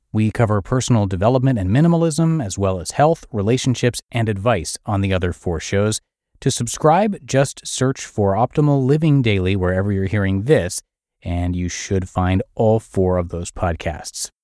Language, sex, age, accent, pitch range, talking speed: English, male, 30-49, American, 95-135 Hz, 160 wpm